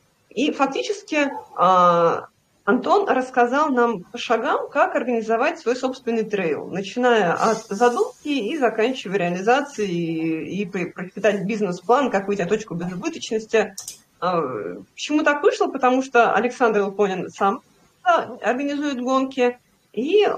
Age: 30-49